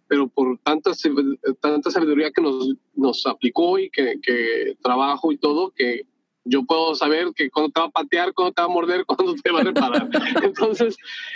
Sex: male